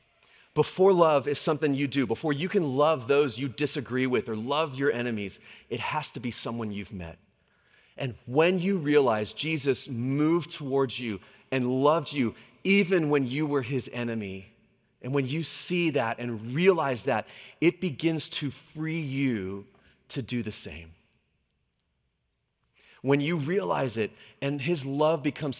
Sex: male